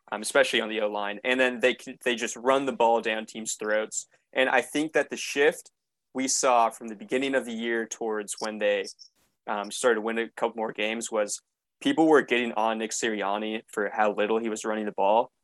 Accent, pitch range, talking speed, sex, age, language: American, 110-125 Hz, 220 wpm, male, 20-39, English